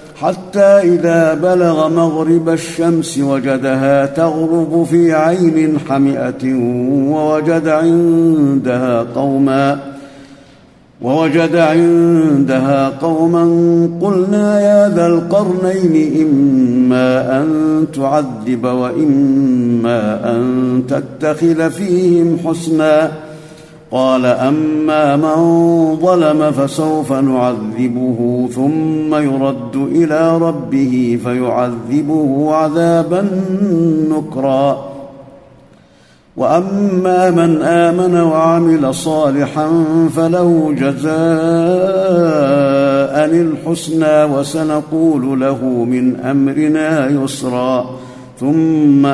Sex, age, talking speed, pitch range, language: male, 50-69, 65 wpm, 135-165 Hz, Arabic